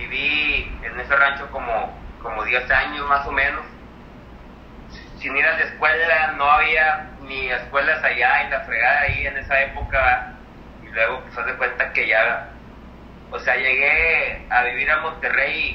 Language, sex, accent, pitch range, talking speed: Spanish, male, Mexican, 125-155 Hz, 165 wpm